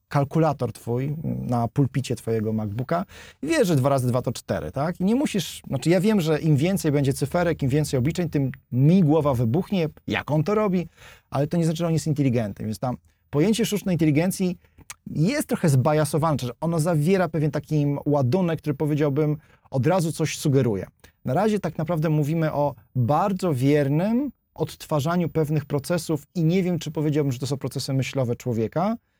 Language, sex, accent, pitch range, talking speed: Polish, male, native, 125-165 Hz, 175 wpm